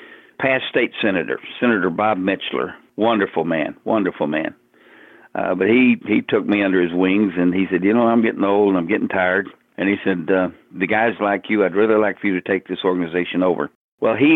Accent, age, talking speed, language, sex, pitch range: American, 60-79, 215 wpm, English, male, 95-115 Hz